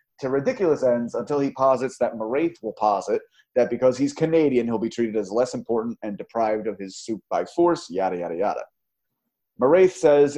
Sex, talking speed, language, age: male, 185 wpm, English, 30-49